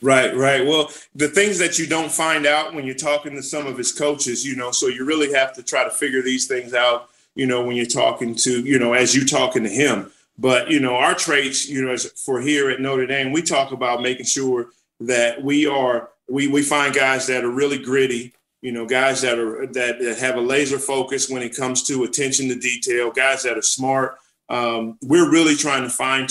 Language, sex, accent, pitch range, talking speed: English, male, American, 120-140 Hz, 225 wpm